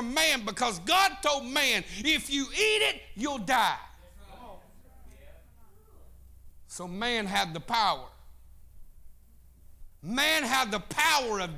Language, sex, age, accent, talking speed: English, male, 50-69, American, 110 wpm